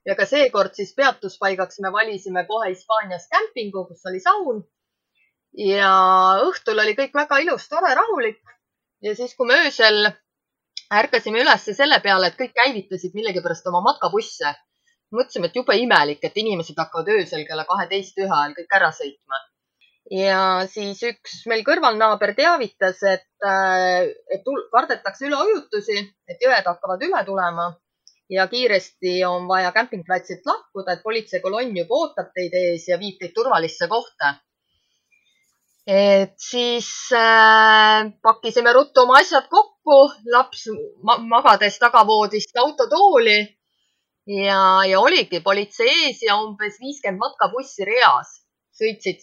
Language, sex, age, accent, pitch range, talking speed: English, female, 20-39, Finnish, 185-245 Hz, 130 wpm